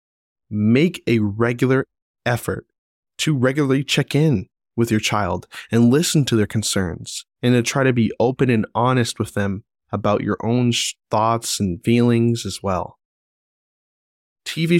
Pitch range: 105-120 Hz